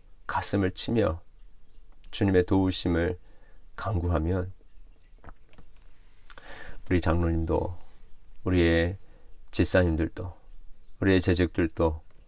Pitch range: 80-95 Hz